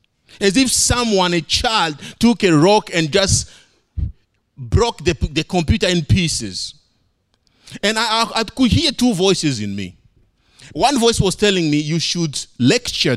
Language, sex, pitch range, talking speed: English, male, 115-185 Hz, 155 wpm